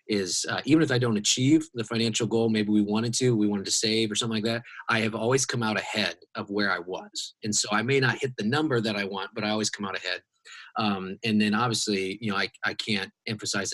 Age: 30-49